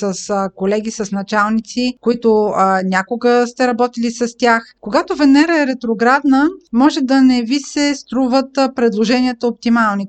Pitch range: 220-270 Hz